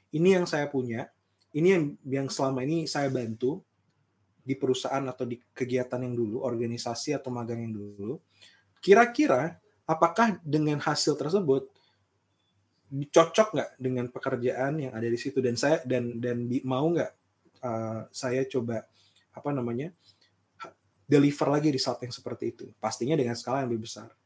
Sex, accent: male, native